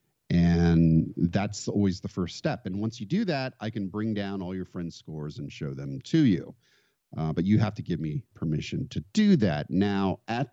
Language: English